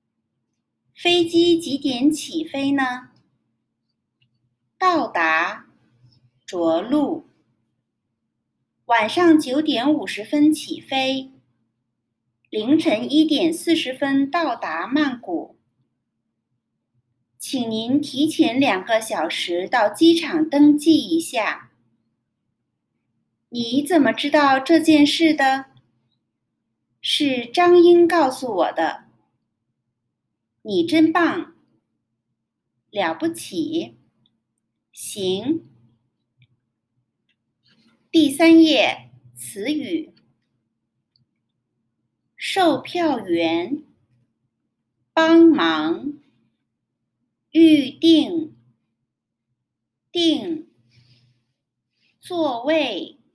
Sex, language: female, Chinese